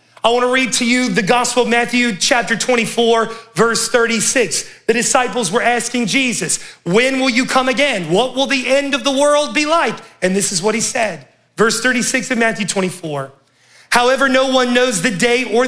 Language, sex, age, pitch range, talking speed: English, male, 30-49, 230-275 Hz, 195 wpm